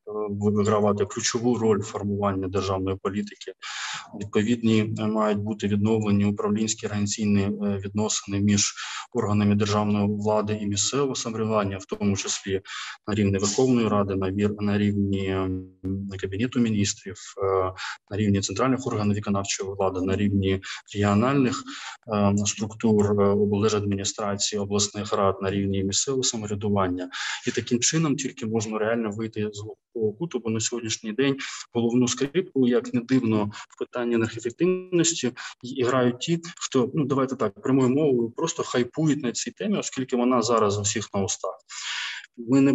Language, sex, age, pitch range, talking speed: Ukrainian, male, 20-39, 100-120 Hz, 130 wpm